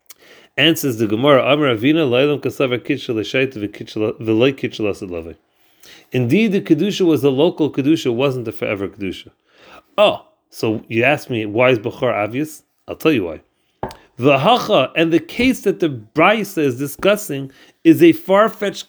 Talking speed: 160 wpm